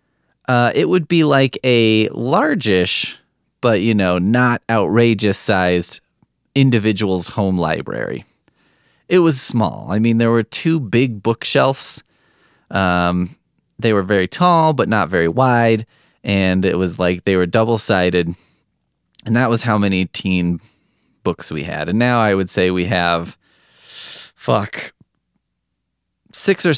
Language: English